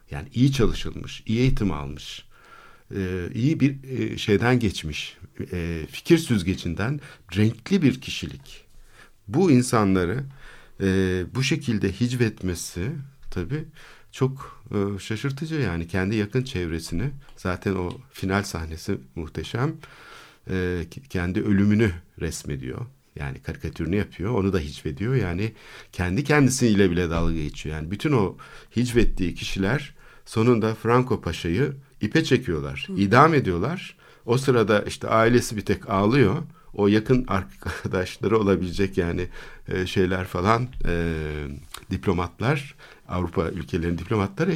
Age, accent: 60-79, native